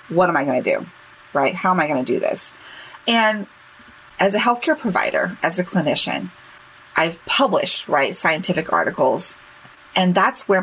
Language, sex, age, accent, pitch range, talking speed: English, female, 30-49, American, 165-220 Hz, 170 wpm